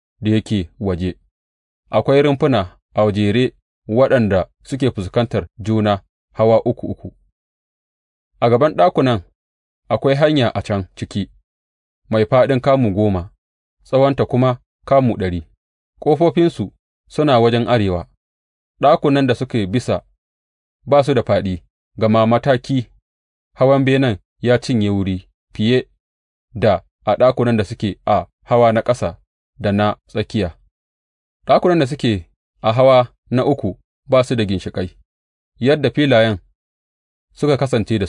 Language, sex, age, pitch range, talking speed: English, male, 30-49, 90-125 Hz, 105 wpm